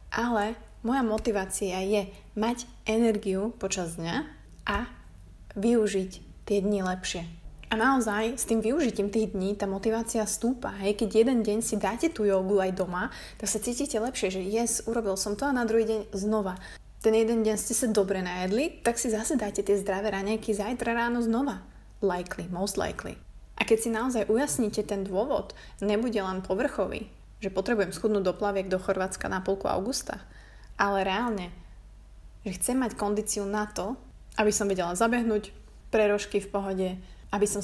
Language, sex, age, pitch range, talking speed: Slovak, female, 20-39, 190-225 Hz, 165 wpm